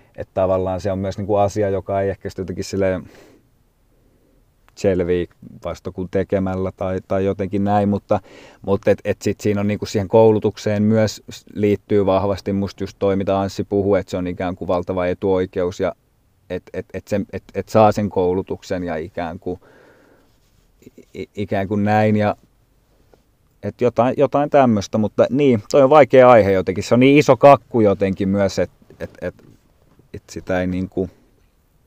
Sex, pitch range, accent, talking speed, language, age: male, 95-110 Hz, native, 155 wpm, Finnish, 30-49